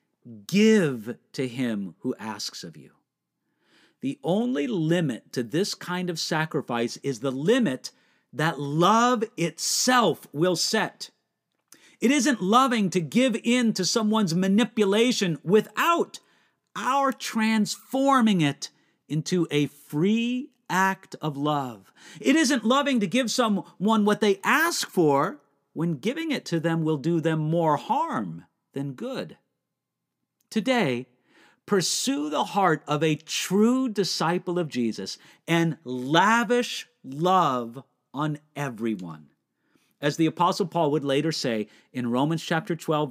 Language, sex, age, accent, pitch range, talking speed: English, male, 50-69, American, 145-220 Hz, 125 wpm